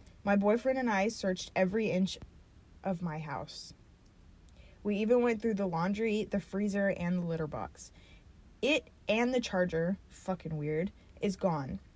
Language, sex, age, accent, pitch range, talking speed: English, female, 20-39, American, 170-210 Hz, 150 wpm